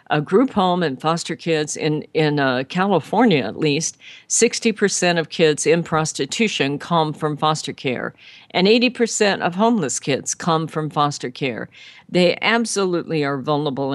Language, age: English, 50-69